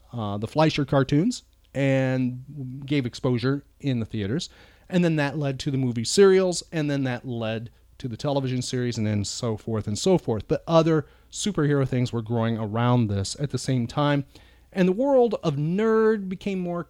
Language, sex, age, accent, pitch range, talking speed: English, male, 30-49, American, 125-175 Hz, 185 wpm